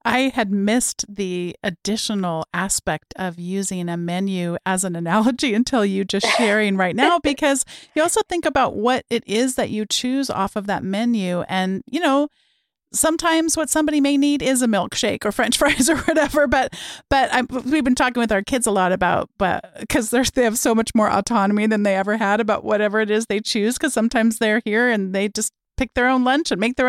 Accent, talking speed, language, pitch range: American, 205 wpm, English, 200-265 Hz